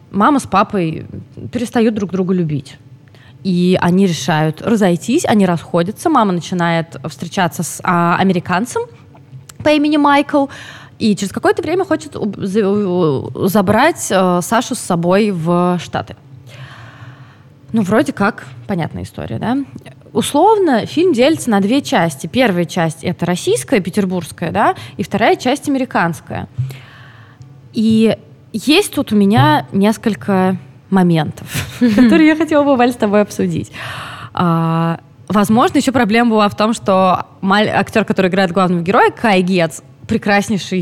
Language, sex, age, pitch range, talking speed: Russian, female, 20-39, 160-220 Hz, 125 wpm